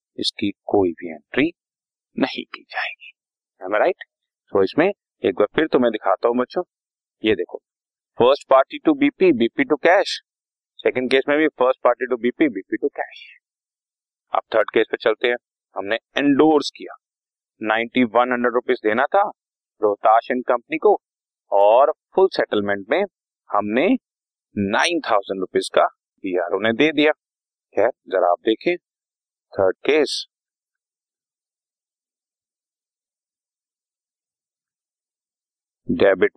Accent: native